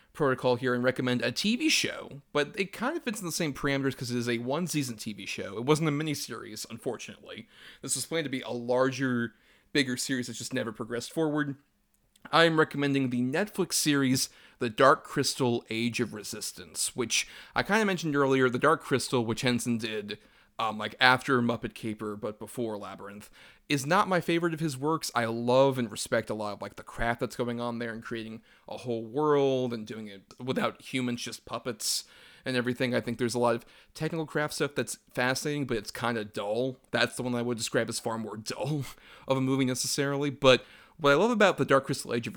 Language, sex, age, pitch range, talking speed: English, male, 30-49, 115-145 Hz, 210 wpm